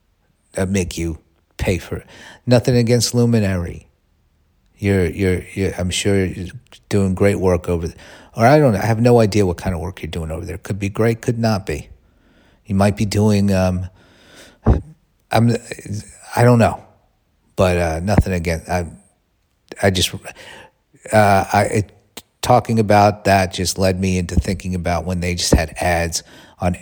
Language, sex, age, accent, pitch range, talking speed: English, male, 50-69, American, 90-110 Hz, 170 wpm